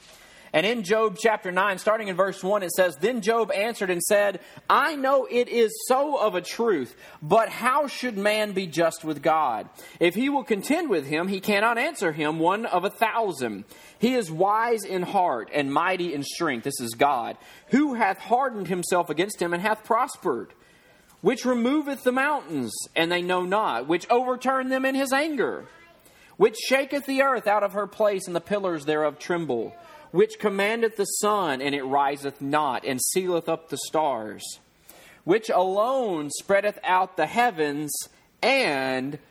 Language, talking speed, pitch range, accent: English, 175 wpm, 145-225 Hz, American